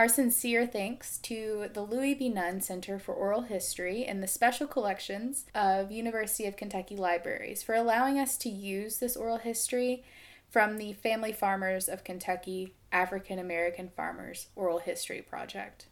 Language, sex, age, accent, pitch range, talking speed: English, female, 20-39, American, 195-250 Hz, 155 wpm